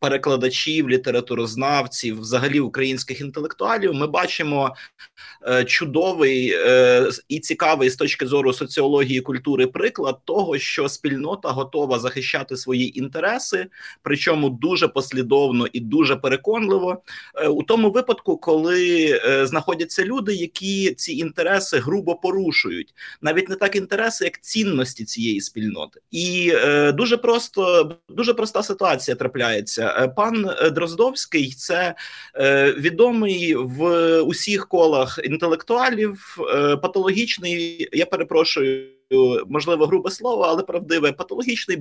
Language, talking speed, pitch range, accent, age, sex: Ukrainian, 105 wpm, 135-210 Hz, native, 30-49, male